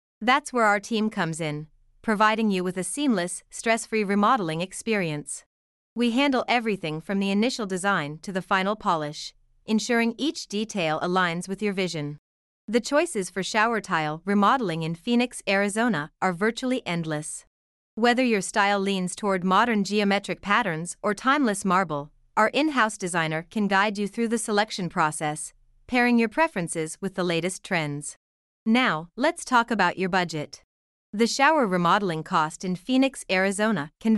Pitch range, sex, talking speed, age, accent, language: 175-230 Hz, female, 150 wpm, 30-49, American, English